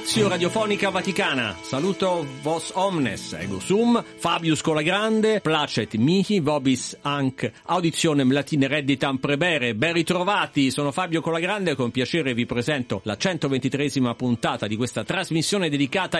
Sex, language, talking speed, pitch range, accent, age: male, Italian, 125 wpm, 120-165 Hz, native, 50-69